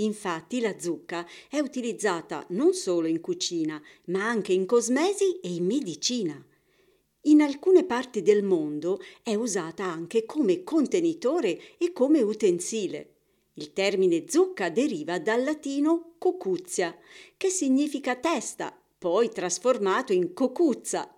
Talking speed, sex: 120 wpm, female